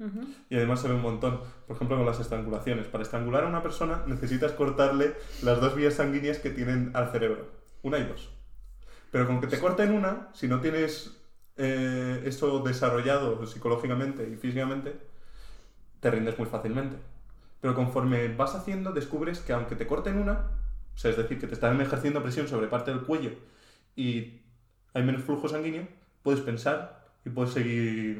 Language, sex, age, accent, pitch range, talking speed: Spanish, male, 20-39, Spanish, 115-155 Hz, 170 wpm